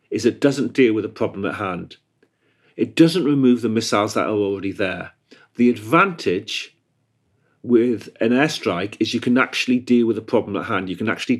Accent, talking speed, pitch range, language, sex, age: British, 190 wpm, 100-125 Hz, English, male, 40-59